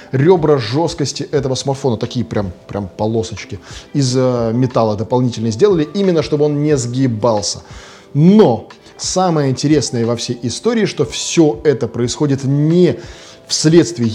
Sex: male